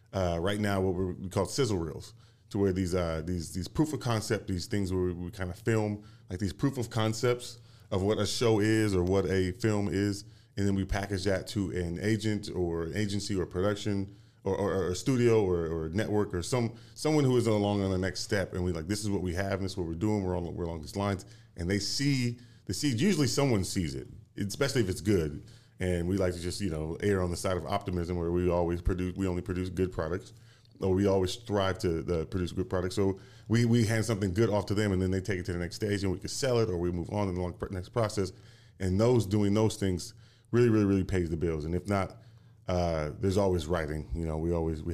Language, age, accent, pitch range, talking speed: English, 30-49, American, 90-110 Hz, 255 wpm